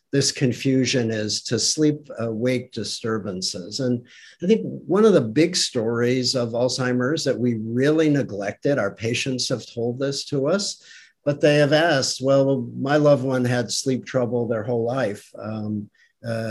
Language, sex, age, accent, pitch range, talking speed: English, male, 50-69, American, 110-135 Hz, 155 wpm